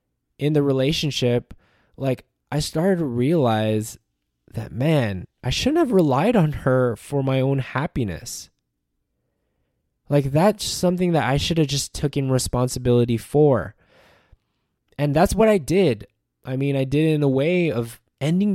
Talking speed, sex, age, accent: 150 wpm, male, 20-39, American